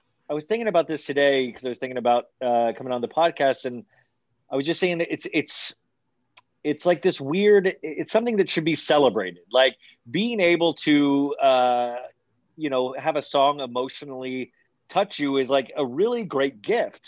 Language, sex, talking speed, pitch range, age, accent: English, male, 185 wpm, 125-165 Hz, 30-49, American